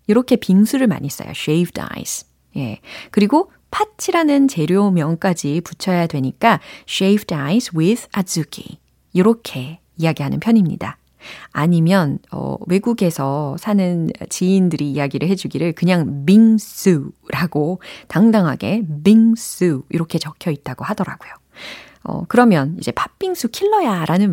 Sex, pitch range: female, 165-230 Hz